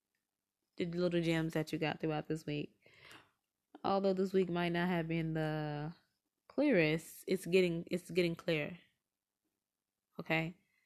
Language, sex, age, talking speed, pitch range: English, female, 20-39, 135 wpm, 155-180 Hz